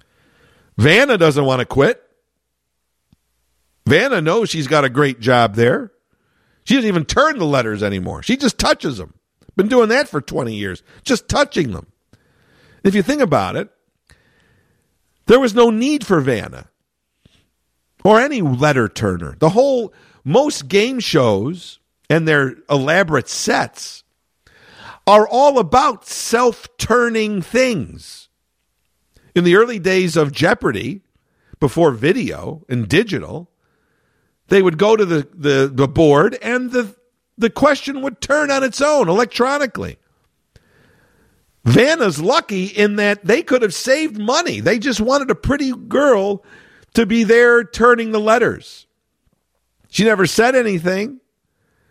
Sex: male